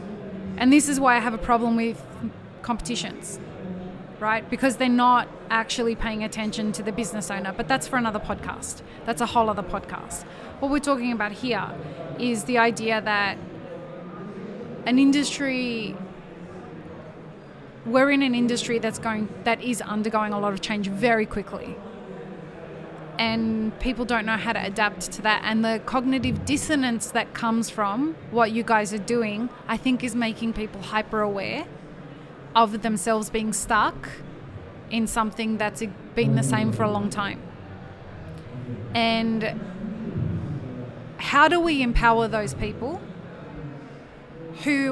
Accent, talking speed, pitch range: Australian, 140 wpm, 195-235 Hz